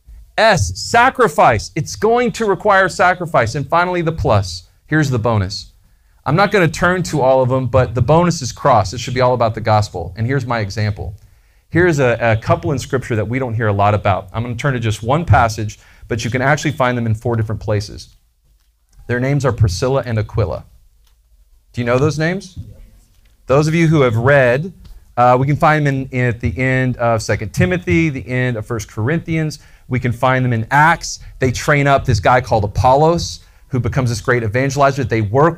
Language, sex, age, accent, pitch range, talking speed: English, male, 40-59, American, 105-140 Hz, 205 wpm